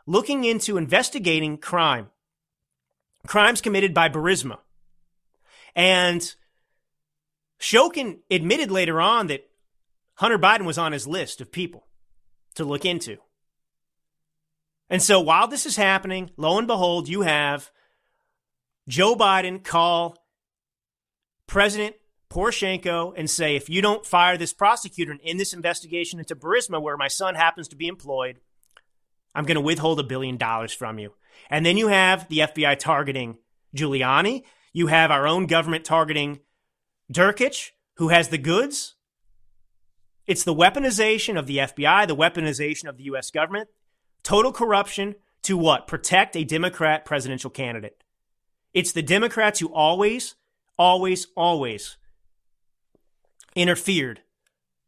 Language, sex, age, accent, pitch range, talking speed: English, male, 30-49, American, 145-185 Hz, 130 wpm